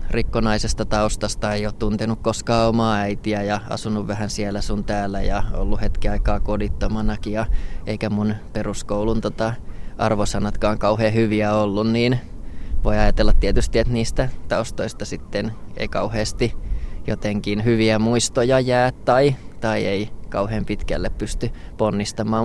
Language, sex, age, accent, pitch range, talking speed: Finnish, male, 20-39, native, 105-115 Hz, 130 wpm